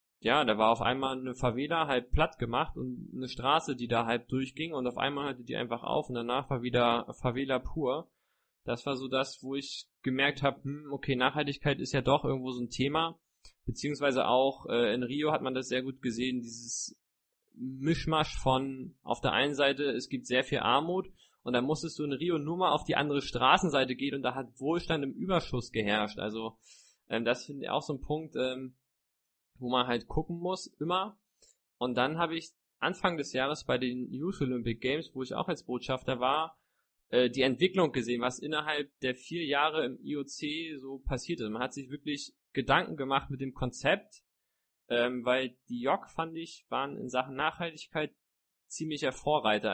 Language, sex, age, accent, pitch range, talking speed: German, male, 20-39, German, 125-150 Hz, 190 wpm